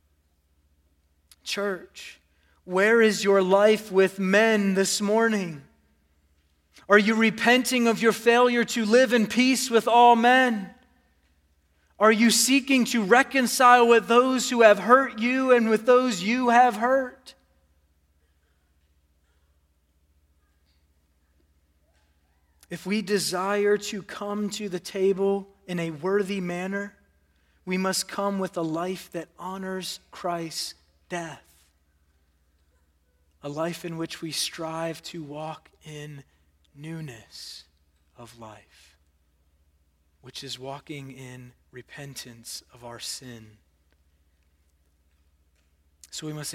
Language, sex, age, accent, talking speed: English, male, 30-49, American, 110 wpm